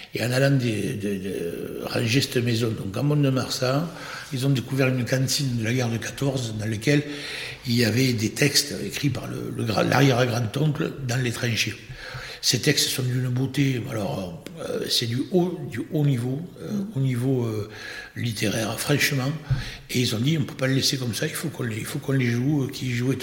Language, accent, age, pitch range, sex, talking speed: French, French, 60-79, 120-140 Hz, male, 205 wpm